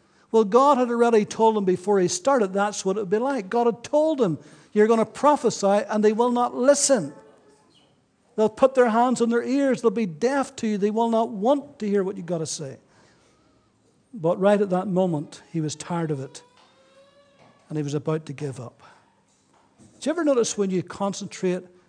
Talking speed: 205 wpm